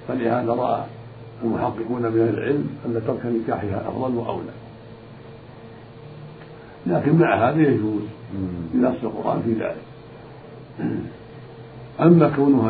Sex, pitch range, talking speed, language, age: male, 115-120 Hz, 95 wpm, Arabic, 50-69